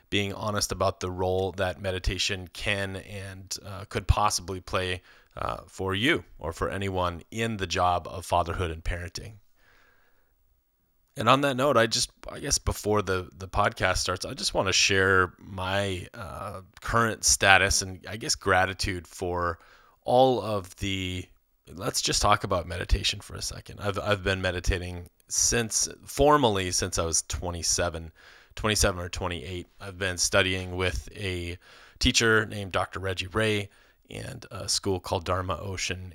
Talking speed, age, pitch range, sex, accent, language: 155 wpm, 30-49, 90-100 Hz, male, American, English